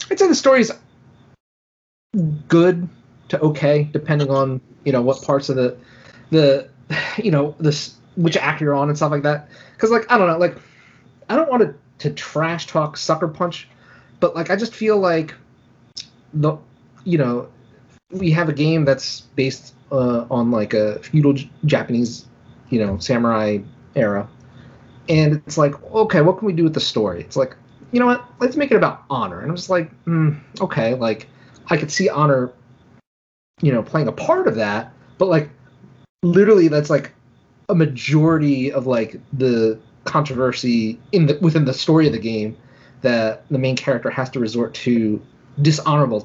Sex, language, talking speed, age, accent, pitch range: male, English, 175 wpm, 30-49, American, 125-160 Hz